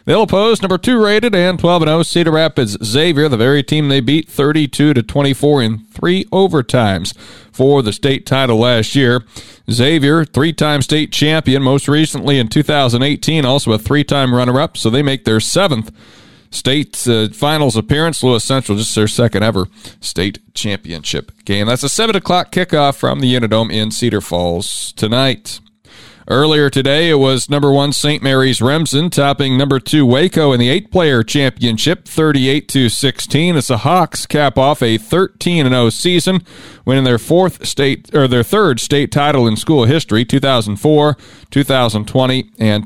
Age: 40-59